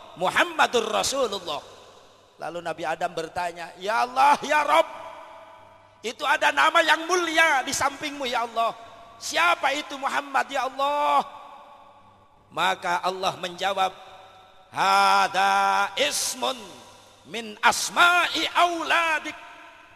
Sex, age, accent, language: male, 40-59, native, Indonesian